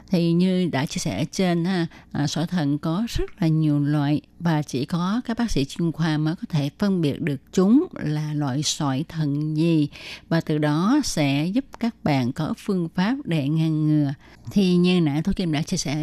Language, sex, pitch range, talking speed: Vietnamese, female, 150-190 Hz, 200 wpm